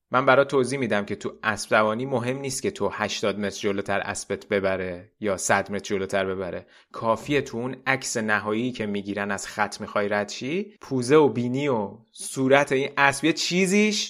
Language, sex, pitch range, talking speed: Persian, male, 115-160 Hz, 175 wpm